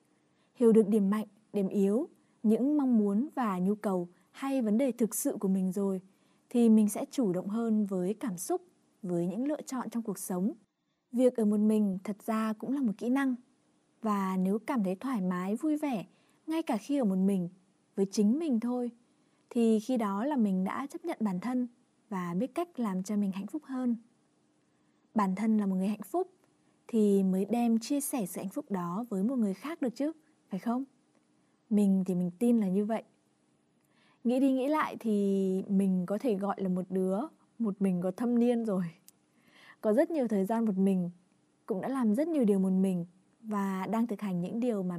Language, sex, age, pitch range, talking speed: Vietnamese, female, 20-39, 195-250 Hz, 205 wpm